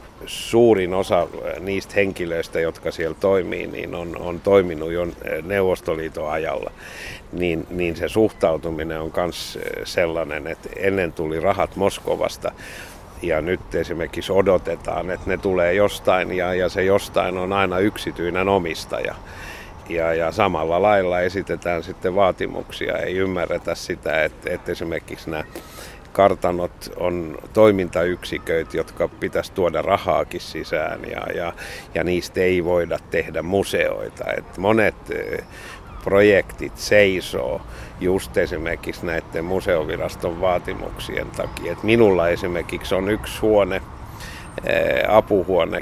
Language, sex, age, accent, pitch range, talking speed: Finnish, male, 60-79, native, 85-100 Hz, 115 wpm